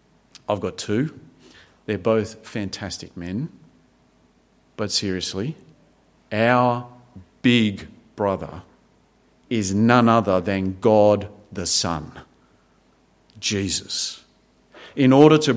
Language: English